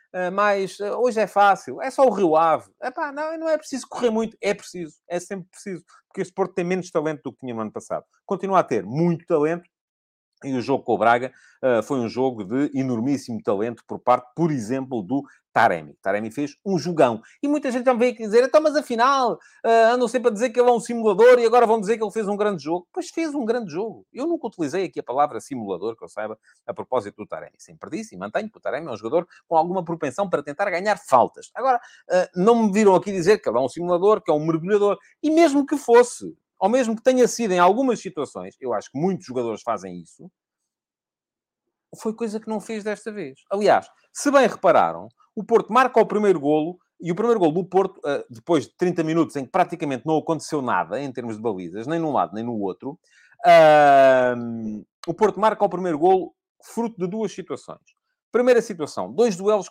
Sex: male